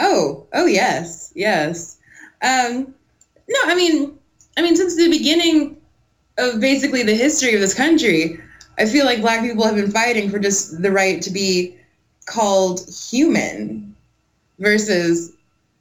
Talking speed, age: 140 wpm, 20-39